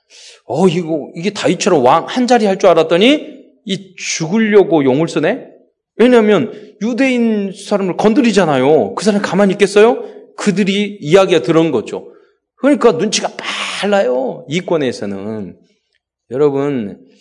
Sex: male